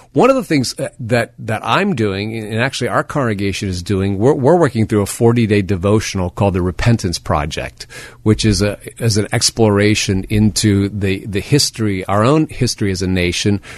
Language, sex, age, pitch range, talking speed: English, male, 40-59, 100-120 Hz, 180 wpm